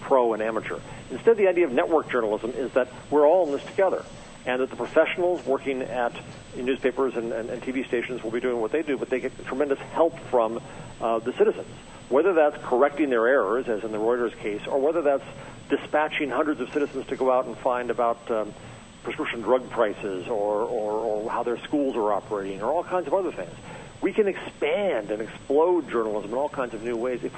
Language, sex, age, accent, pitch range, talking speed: English, male, 50-69, American, 115-145 Hz, 215 wpm